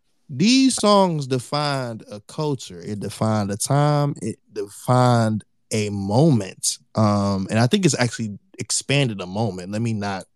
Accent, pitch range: American, 110-145 Hz